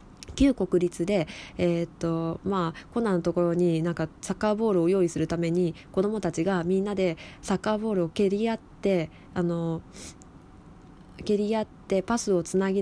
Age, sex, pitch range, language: 20-39, female, 165-205 Hz, Japanese